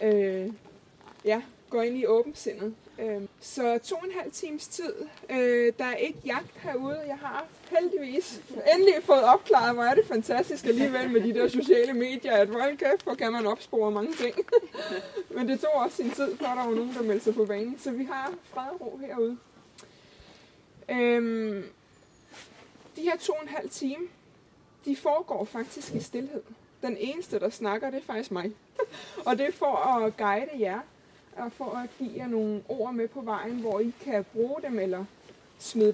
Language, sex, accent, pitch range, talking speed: Danish, female, native, 220-280 Hz, 180 wpm